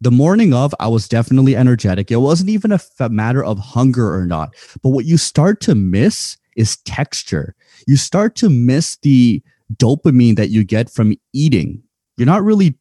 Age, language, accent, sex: 20-39, English, American, male